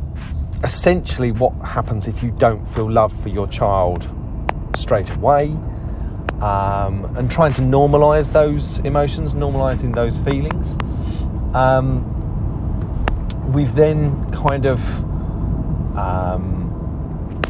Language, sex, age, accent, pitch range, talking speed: English, male, 30-49, British, 80-115 Hz, 100 wpm